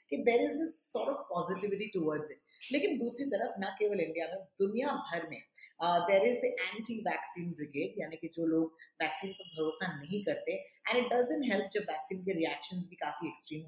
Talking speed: 195 wpm